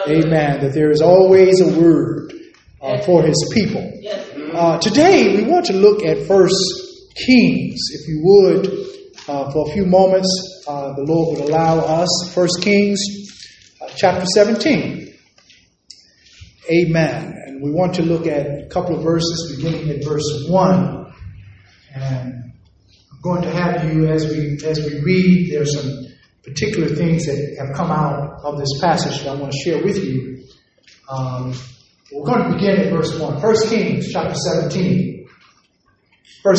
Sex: male